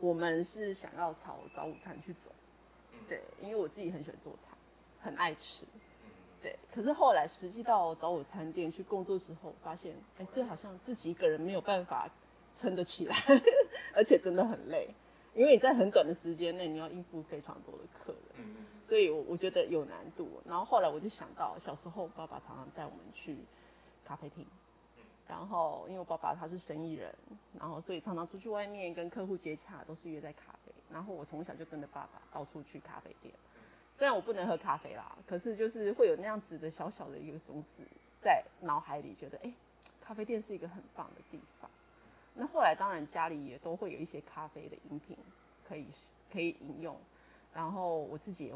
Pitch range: 160-225 Hz